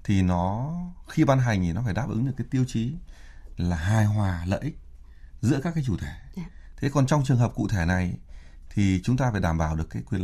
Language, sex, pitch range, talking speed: Vietnamese, male, 90-125 Hz, 240 wpm